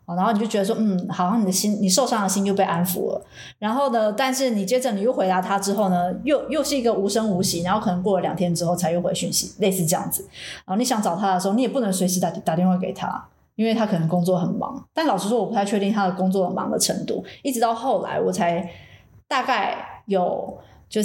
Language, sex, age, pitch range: Chinese, female, 20-39, 185-225 Hz